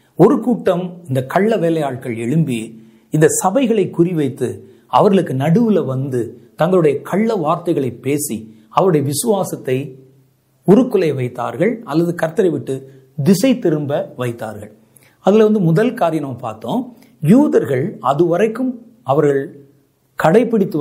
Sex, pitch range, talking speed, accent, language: male, 135-210 Hz, 100 wpm, native, Tamil